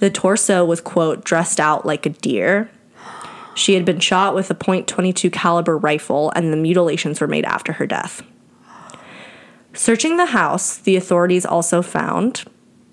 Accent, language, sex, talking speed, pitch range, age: American, English, female, 155 wpm, 175-210 Hz, 20-39